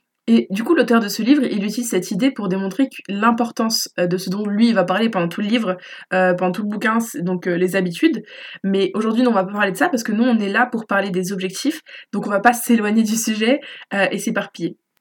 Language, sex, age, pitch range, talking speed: French, female, 20-39, 200-255 Hz, 250 wpm